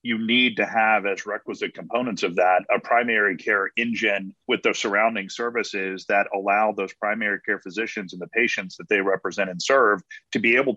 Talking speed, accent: 190 wpm, American